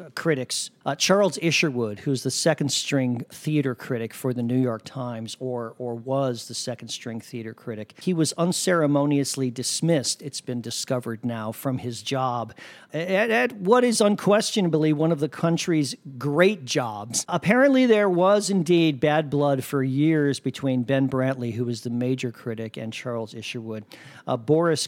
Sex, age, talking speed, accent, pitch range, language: male, 50-69, 160 wpm, American, 125-150 Hz, English